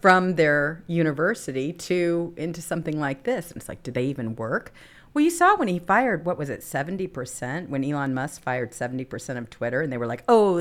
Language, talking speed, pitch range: English, 210 wpm, 130-175 Hz